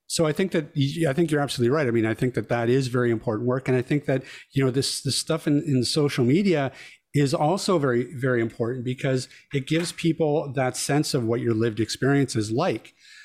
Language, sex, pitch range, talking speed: English, male, 120-160 Hz, 225 wpm